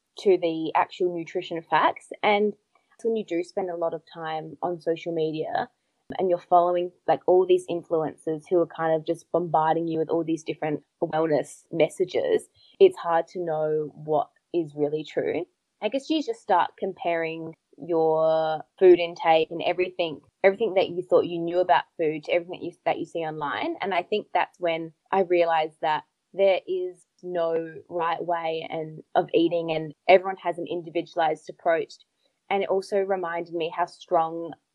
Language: English